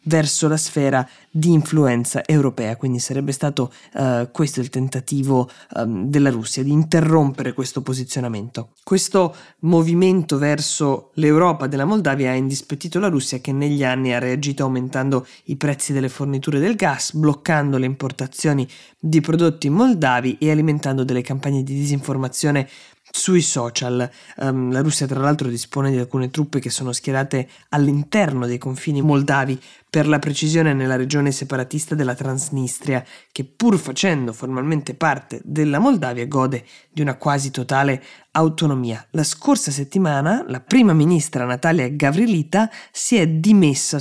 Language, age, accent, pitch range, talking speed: Italian, 20-39, native, 130-155 Hz, 140 wpm